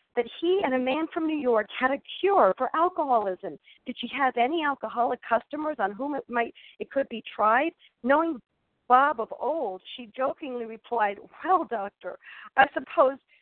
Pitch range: 240-310 Hz